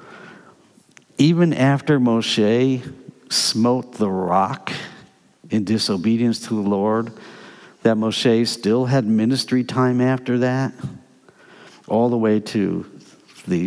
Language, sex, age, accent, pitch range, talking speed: English, male, 60-79, American, 105-130 Hz, 105 wpm